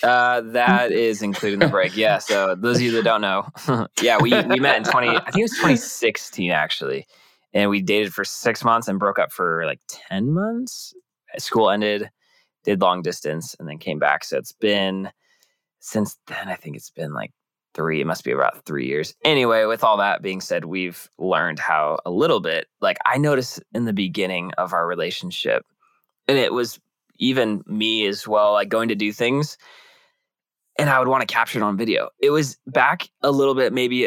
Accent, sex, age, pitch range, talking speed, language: American, male, 20-39, 105-130 Hz, 200 wpm, English